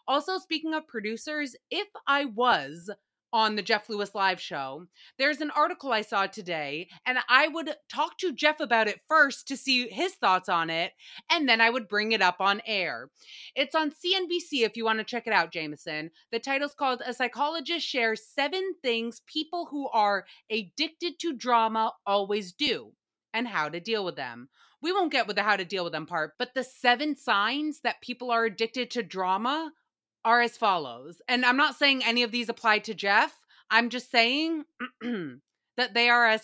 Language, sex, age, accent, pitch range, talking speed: English, female, 30-49, American, 205-285 Hz, 195 wpm